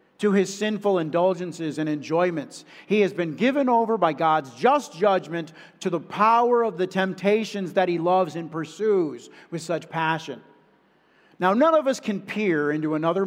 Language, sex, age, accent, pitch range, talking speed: English, male, 50-69, American, 170-225 Hz, 165 wpm